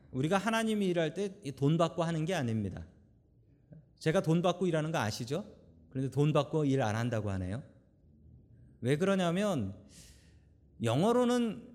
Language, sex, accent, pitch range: Korean, male, native, 115-170 Hz